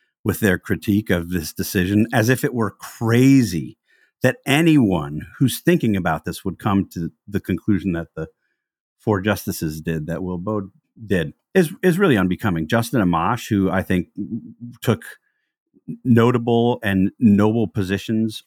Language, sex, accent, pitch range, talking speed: English, male, American, 95-120 Hz, 145 wpm